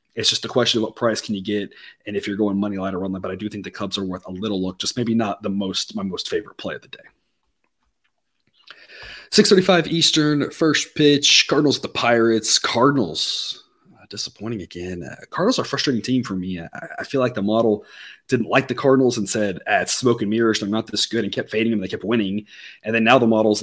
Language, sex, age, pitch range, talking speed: English, male, 30-49, 105-150 Hz, 240 wpm